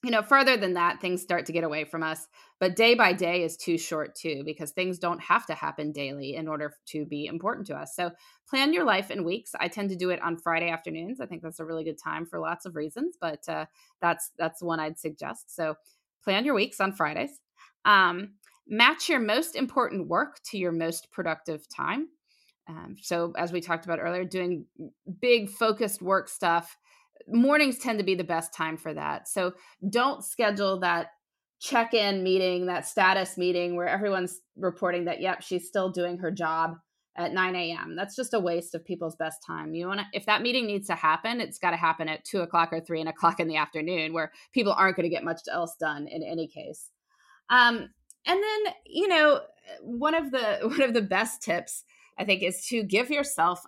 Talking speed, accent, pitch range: 210 wpm, American, 165-225 Hz